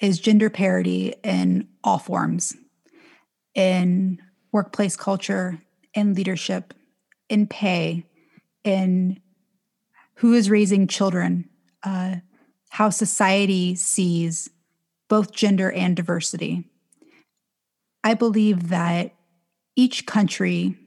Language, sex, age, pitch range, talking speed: English, female, 30-49, 170-215 Hz, 90 wpm